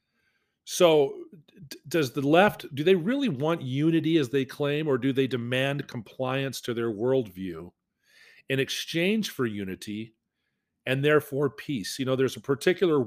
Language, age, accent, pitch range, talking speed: English, 40-59, American, 110-140 Hz, 145 wpm